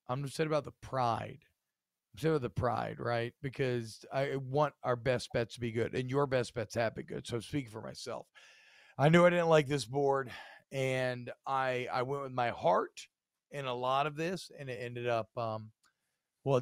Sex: male